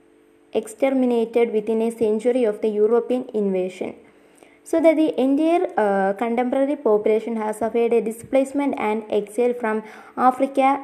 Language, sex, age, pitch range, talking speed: English, female, 20-39, 210-245 Hz, 125 wpm